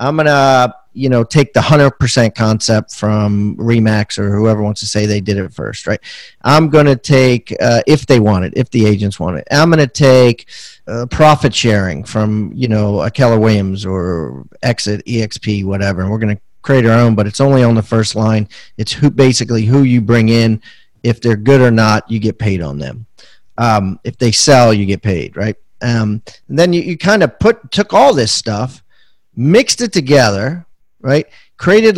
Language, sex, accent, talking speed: English, male, American, 205 wpm